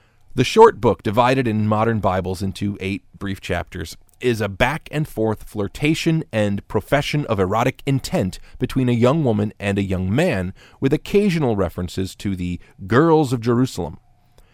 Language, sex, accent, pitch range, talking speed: English, male, American, 95-125 Hz, 150 wpm